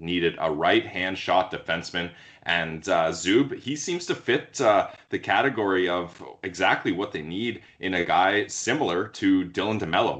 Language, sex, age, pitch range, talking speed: English, male, 20-39, 85-110 Hz, 160 wpm